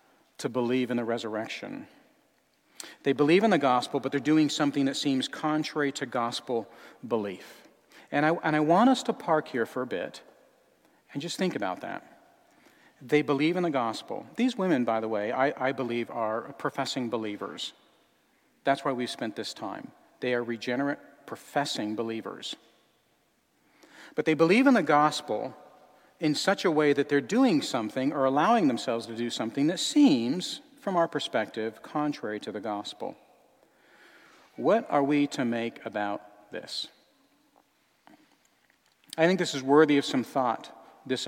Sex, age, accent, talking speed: male, 40-59, American, 155 wpm